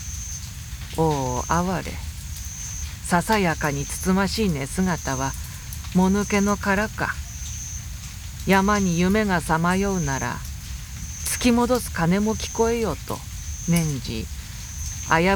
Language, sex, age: Japanese, female, 50-69